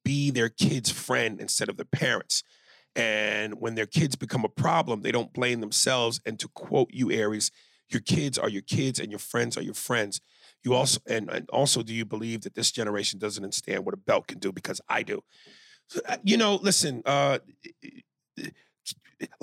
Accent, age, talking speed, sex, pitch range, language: American, 40-59, 190 wpm, male, 115-160 Hz, English